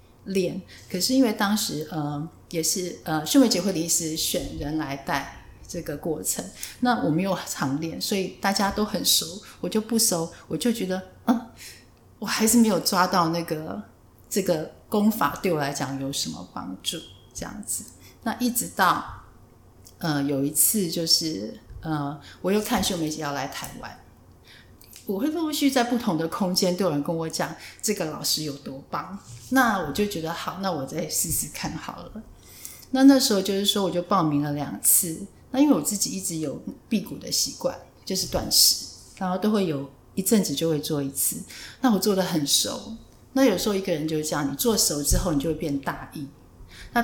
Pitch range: 145-200 Hz